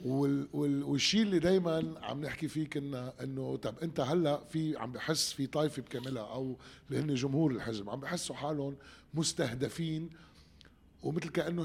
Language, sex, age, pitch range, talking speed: Arabic, male, 30-49, 110-155 Hz, 140 wpm